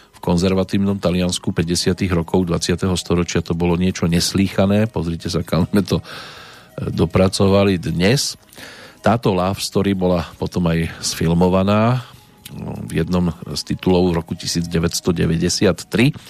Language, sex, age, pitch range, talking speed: Slovak, male, 40-59, 85-95 Hz, 110 wpm